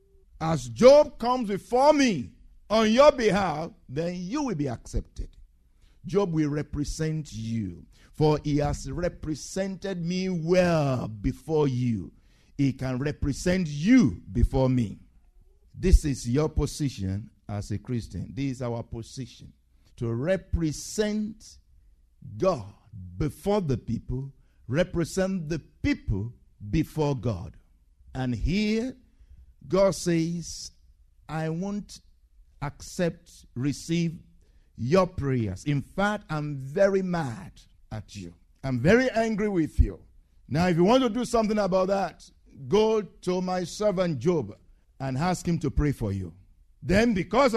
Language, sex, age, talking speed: English, male, 50-69, 125 wpm